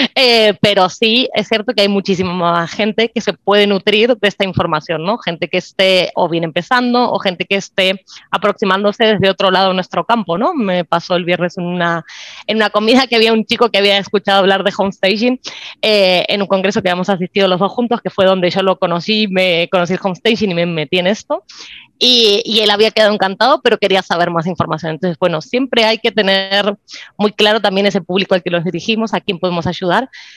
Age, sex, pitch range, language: 20-39, female, 185-215 Hz, Spanish